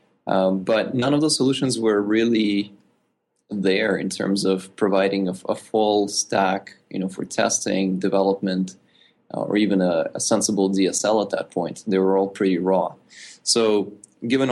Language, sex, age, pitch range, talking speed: English, male, 20-39, 95-105 Hz, 160 wpm